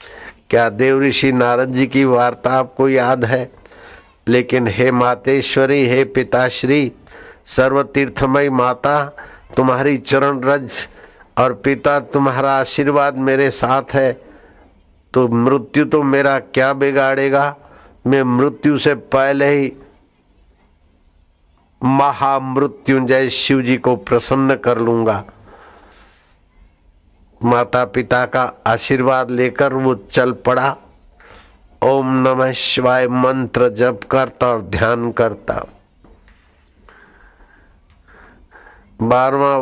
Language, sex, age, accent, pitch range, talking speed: Hindi, male, 60-79, native, 115-135 Hz, 95 wpm